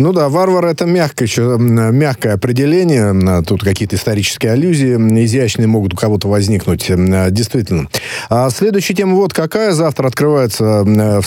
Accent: native